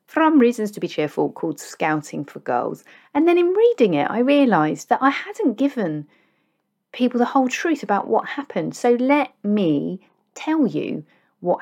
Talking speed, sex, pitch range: 170 wpm, female, 155-230 Hz